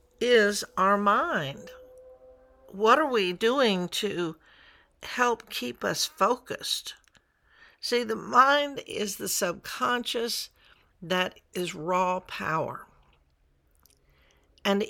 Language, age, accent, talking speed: English, 60-79, American, 95 wpm